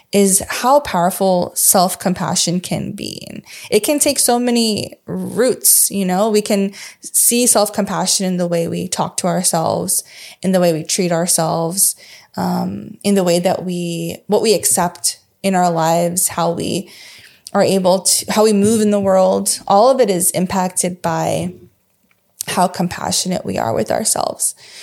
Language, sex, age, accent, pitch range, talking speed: English, female, 20-39, American, 180-210 Hz, 160 wpm